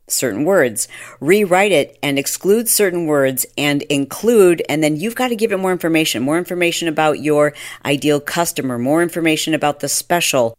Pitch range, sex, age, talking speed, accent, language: 135-165 Hz, female, 50-69, 170 wpm, American, English